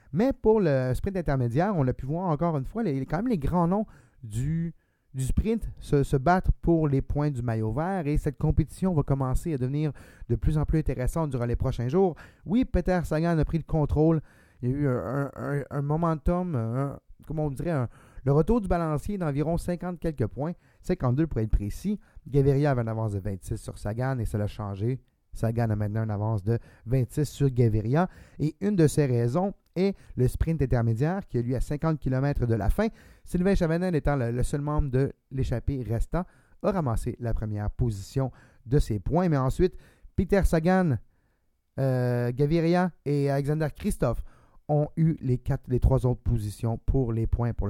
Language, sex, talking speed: English, male, 195 wpm